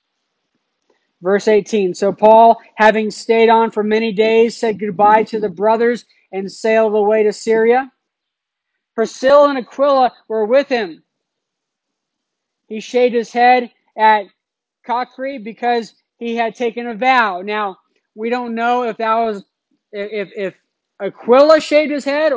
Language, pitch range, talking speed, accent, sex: English, 210-235 Hz, 135 wpm, American, male